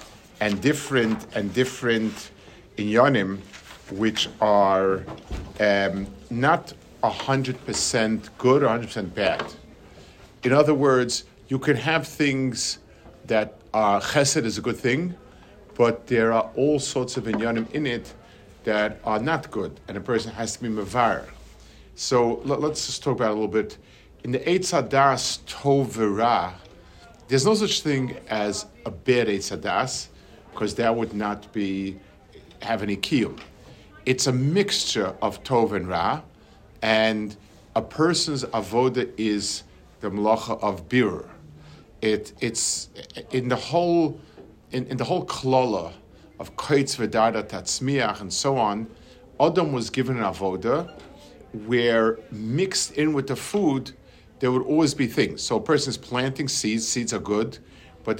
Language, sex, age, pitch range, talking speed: English, male, 50-69, 105-135 Hz, 145 wpm